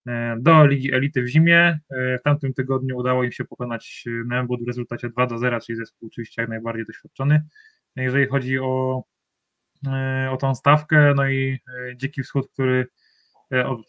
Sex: male